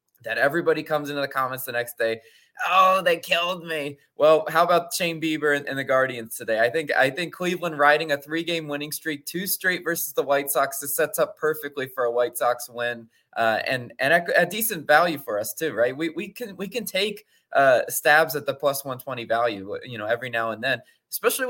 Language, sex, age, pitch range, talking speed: English, male, 20-39, 135-170 Hz, 220 wpm